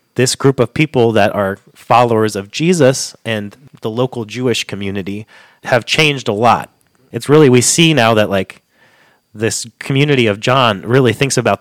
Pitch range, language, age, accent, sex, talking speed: 100-125 Hz, English, 30-49, American, male, 165 wpm